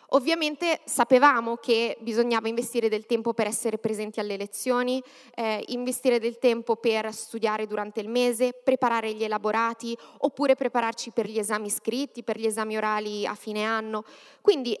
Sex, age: female, 20-39